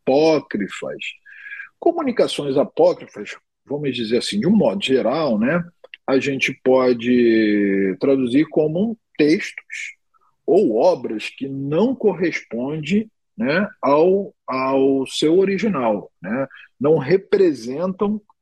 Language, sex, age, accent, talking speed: Portuguese, male, 40-59, Brazilian, 100 wpm